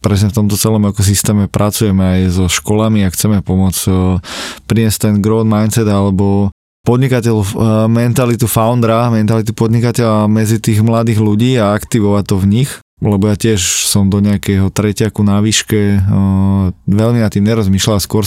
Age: 20-39